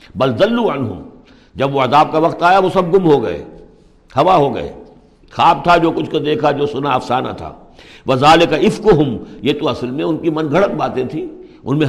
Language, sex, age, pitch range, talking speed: Urdu, male, 60-79, 110-150 Hz, 205 wpm